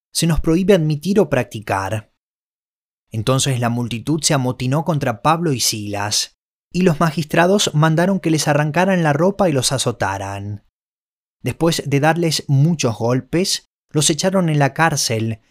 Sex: male